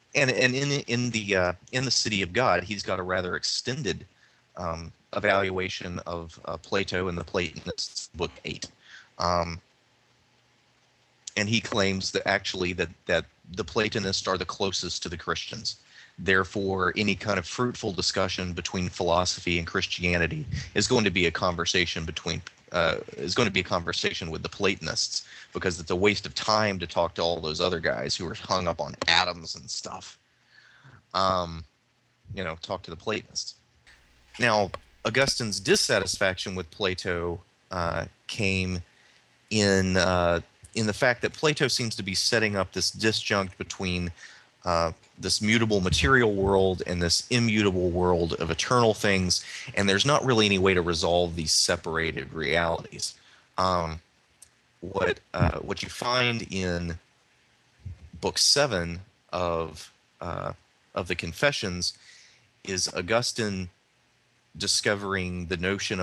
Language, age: English, 30-49